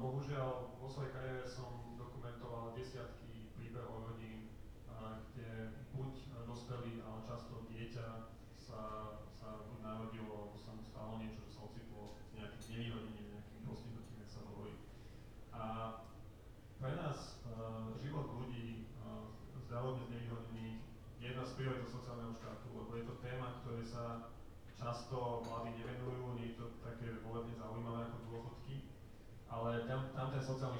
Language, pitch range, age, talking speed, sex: Slovak, 110-125 Hz, 30-49, 135 wpm, male